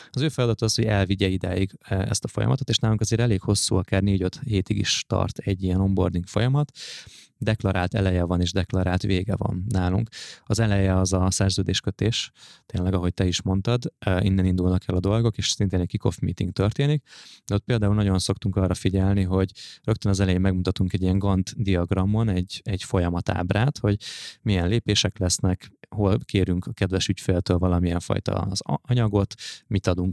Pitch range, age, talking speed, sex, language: 95-105 Hz, 20-39, 165 wpm, male, Hungarian